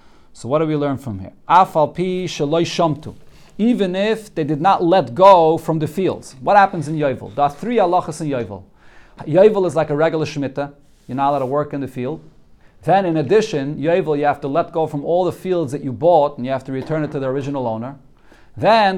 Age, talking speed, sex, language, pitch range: 40-59, 220 wpm, male, English, 145-190 Hz